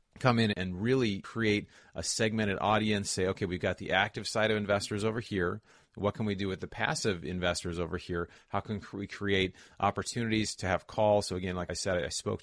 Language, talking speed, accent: English, 210 wpm, American